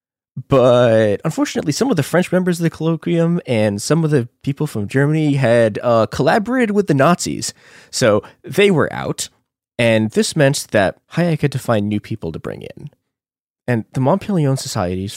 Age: 20-39